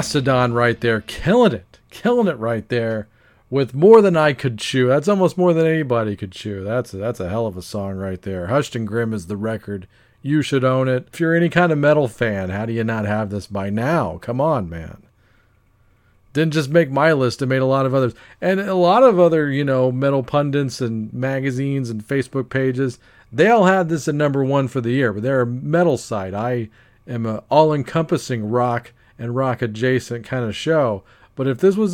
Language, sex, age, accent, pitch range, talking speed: English, male, 40-59, American, 110-150 Hz, 215 wpm